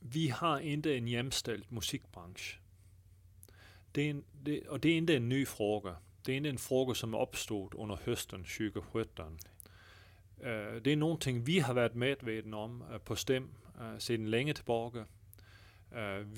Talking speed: 170 wpm